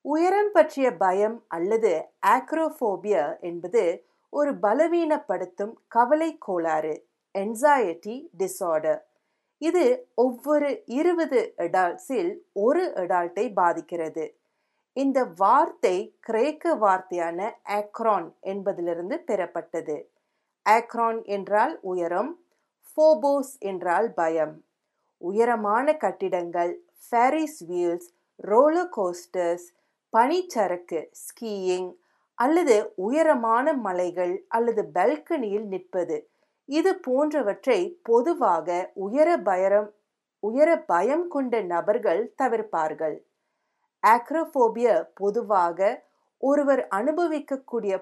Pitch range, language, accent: 185-305 Hz, Tamil, native